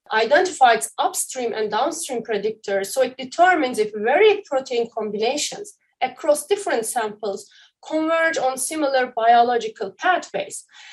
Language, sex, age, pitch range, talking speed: English, female, 30-49, 215-345 Hz, 110 wpm